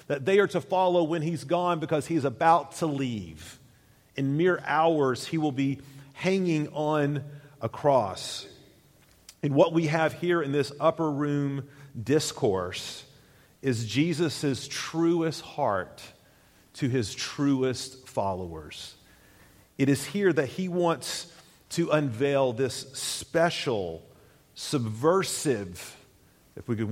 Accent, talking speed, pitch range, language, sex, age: American, 125 wpm, 115-155 Hz, English, male, 40-59